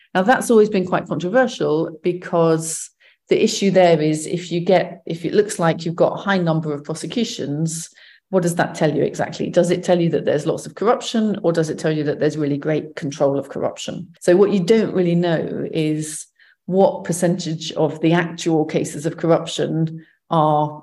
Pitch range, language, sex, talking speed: 160-195 Hz, English, female, 195 wpm